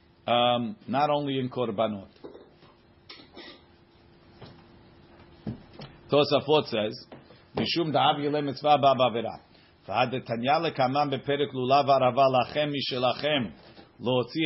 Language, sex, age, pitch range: English, male, 50-69, 120-155 Hz